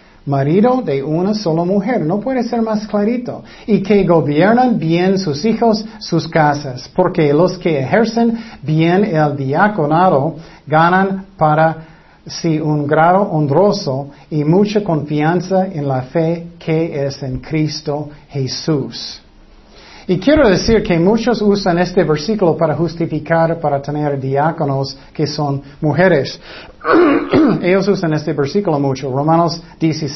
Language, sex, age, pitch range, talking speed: Spanish, male, 50-69, 150-195 Hz, 125 wpm